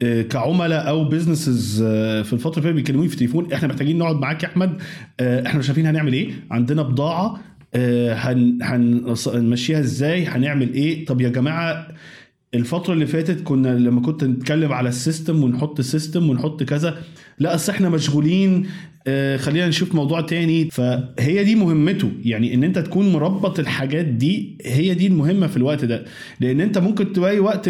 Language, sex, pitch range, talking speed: Arabic, male, 135-170 Hz, 155 wpm